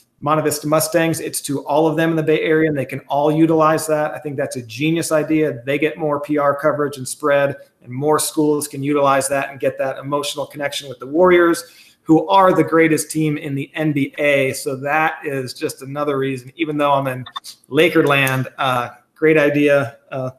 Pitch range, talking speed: 140-160 Hz, 200 wpm